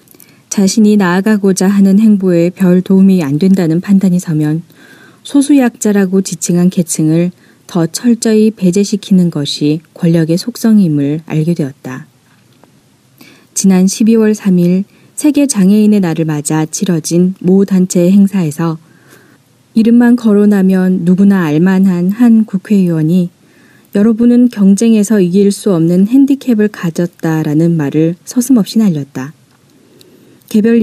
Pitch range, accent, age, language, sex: 165-210 Hz, native, 20-39, Korean, female